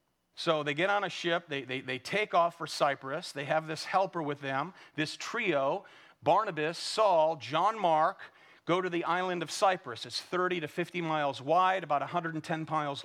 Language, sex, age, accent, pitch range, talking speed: English, male, 40-59, American, 130-170 Hz, 180 wpm